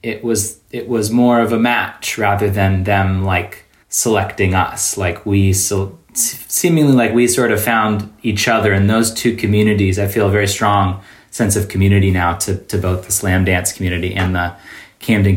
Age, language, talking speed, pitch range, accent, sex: 20-39, English, 185 wpm, 95-110 Hz, American, male